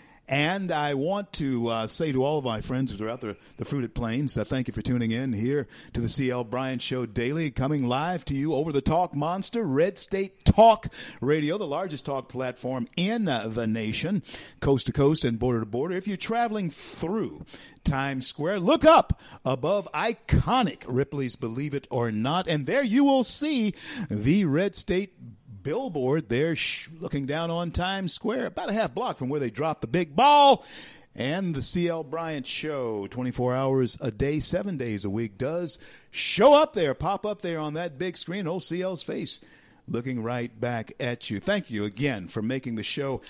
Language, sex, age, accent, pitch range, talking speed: English, male, 50-69, American, 125-170 Hz, 190 wpm